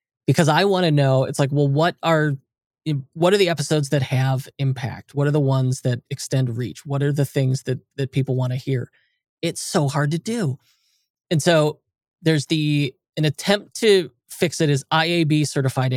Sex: male